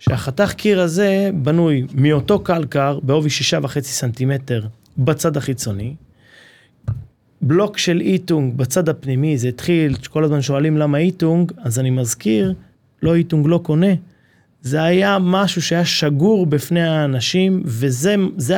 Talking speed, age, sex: 125 wpm, 30-49, male